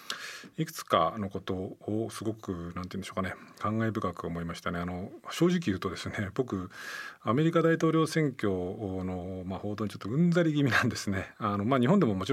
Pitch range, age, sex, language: 95-120 Hz, 40-59, male, Japanese